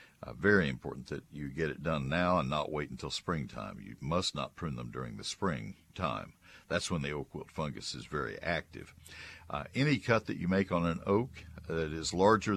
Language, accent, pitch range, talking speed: English, American, 75-95 Hz, 205 wpm